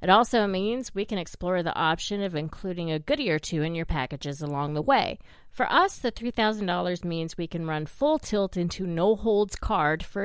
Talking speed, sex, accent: 200 wpm, female, American